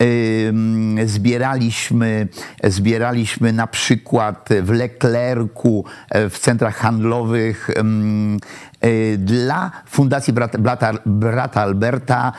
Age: 50-69